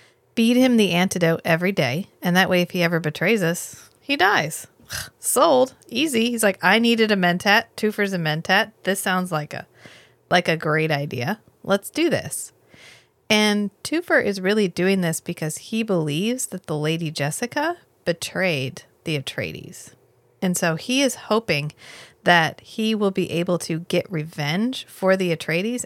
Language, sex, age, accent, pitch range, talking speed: English, female, 30-49, American, 160-205 Hz, 160 wpm